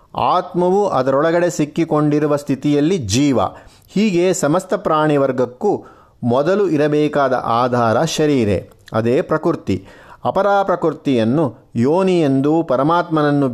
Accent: native